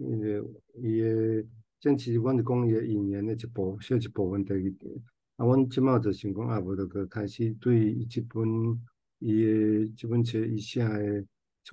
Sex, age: male, 50-69